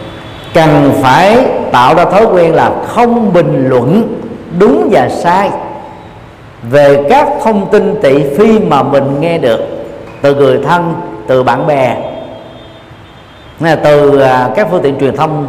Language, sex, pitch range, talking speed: Vietnamese, male, 130-195 Hz, 135 wpm